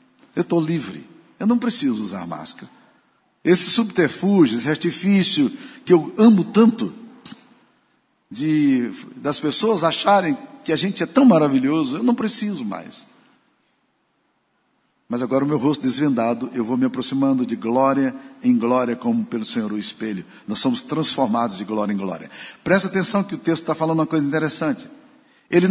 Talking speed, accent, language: 155 wpm, Brazilian, Portuguese